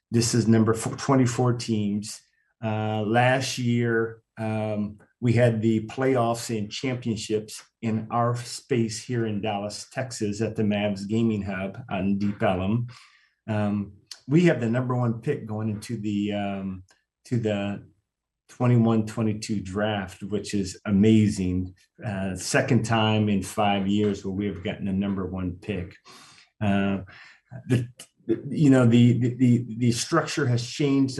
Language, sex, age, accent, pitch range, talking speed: English, male, 30-49, American, 105-120 Hz, 135 wpm